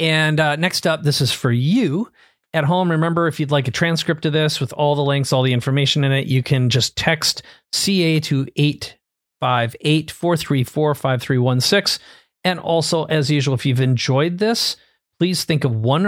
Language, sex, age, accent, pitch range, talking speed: English, male, 40-59, American, 135-165 Hz, 170 wpm